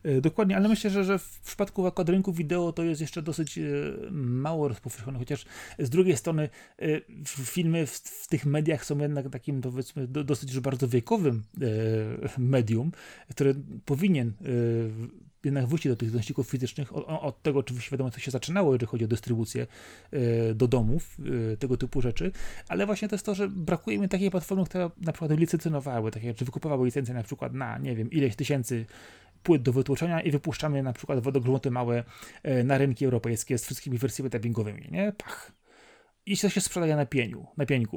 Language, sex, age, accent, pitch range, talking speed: Polish, male, 30-49, native, 125-170 Hz, 165 wpm